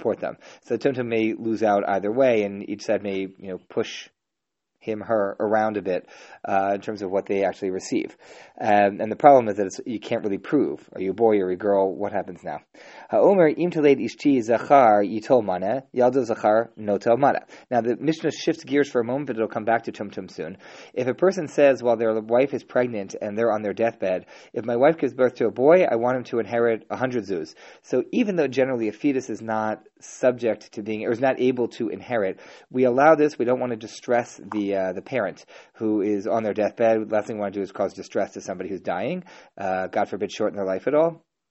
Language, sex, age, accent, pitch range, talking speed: English, male, 30-49, American, 105-130 Hz, 215 wpm